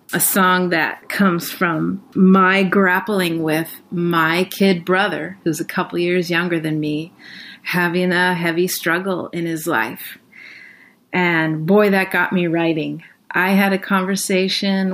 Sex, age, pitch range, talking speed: female, 30-49, 170-205 Hz, 140 wpm